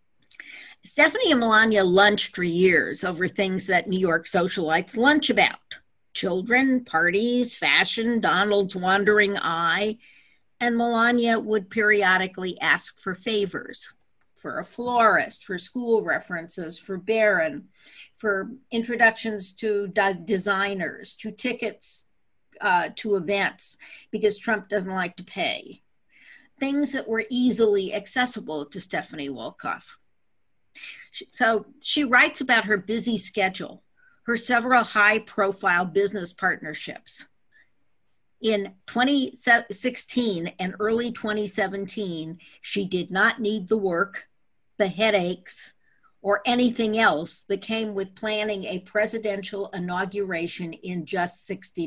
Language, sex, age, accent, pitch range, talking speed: English, female, 50-69, American, 190-235 Hz, 110 wpm